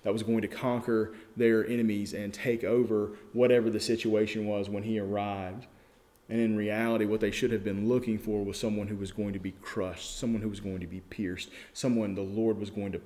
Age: 30-49